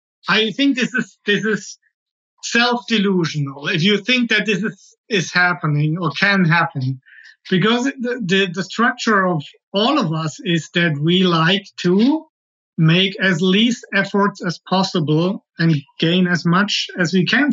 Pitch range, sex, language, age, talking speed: 170-215 Hz, male, English, 50-69, 155 wpm